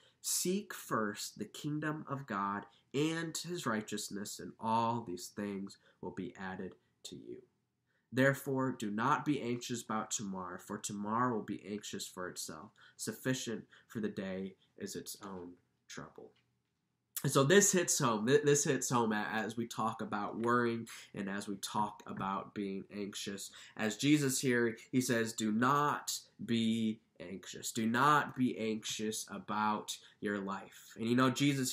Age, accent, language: 20-39, American, English